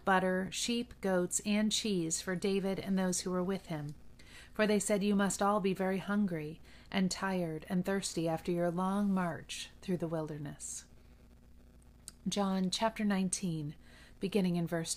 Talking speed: 150 wpm